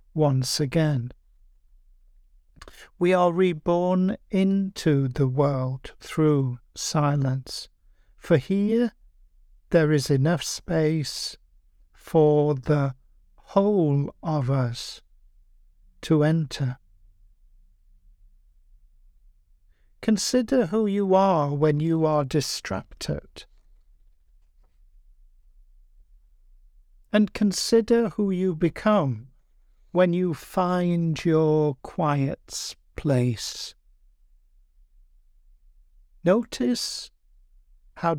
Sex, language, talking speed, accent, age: male, English, 70 wpm, British, 60-79